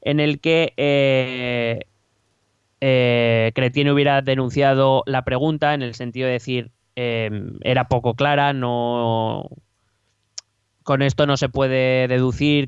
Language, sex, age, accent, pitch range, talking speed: Spanish, male, 20-39, Spanish, 120-140 Hz, 125 wpm